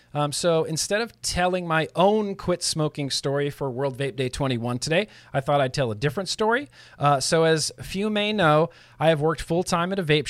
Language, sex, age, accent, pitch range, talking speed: English, male, 40-59, American, 135-175 Hz, 215 wpm